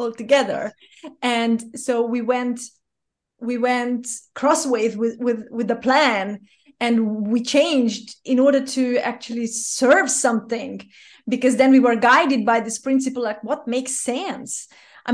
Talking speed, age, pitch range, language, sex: 140 wpm, 30-49, 230-260 Hz, English, female